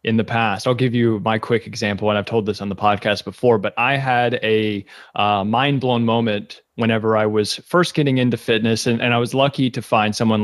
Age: 30-49